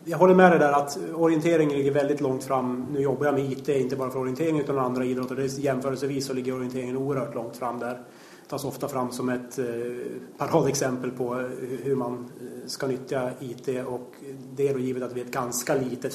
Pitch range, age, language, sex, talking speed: 130-145 Hz, 30-49, Swedish, male, 215 wpm